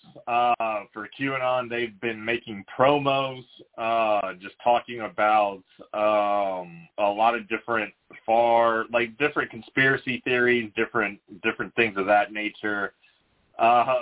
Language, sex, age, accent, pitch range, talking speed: English, male, 30-49, American, 115-135 Hz, 120 wpm